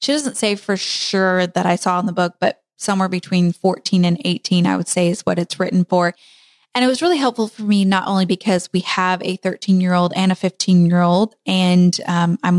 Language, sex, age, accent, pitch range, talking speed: English, female, 20-39, American, 180-200 Hz, 215 wpm